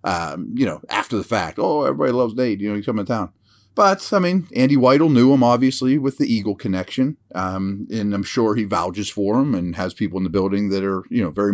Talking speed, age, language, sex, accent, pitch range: 245 wpm, 30-49, English, male, American, 100-130 Hz